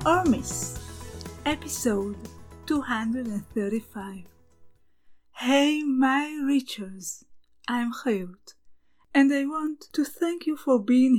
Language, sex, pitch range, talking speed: English, female, 200-265 Hz, 90 wpm